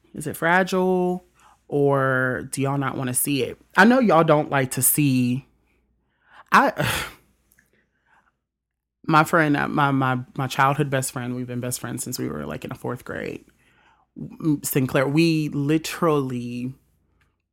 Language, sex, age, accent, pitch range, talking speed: English, male, 30-49, American, 130-160 Hz, 145 wpm